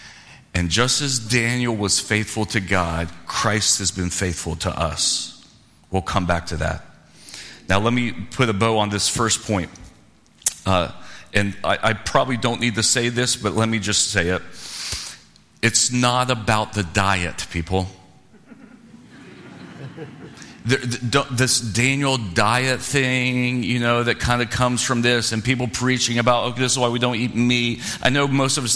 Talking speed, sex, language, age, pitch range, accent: 165 wpm, male, English, 40-59, 105-130 Hz, American